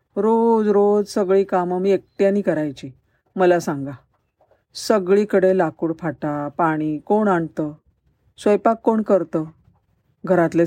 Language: Marathi